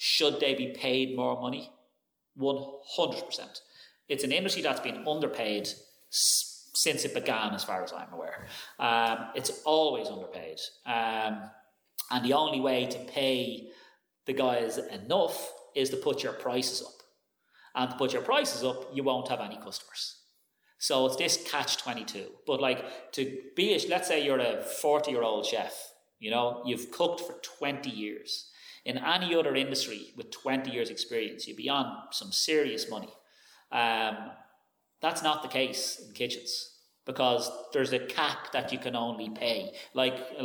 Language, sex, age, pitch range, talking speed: English, male, 30-49, 120-150 Hz, 160 wpm